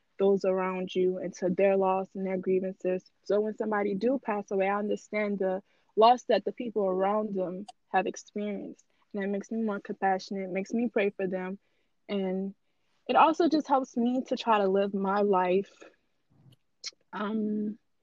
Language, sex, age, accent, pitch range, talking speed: English, female, 20-39, American, 195-245 Hz, 170 wpm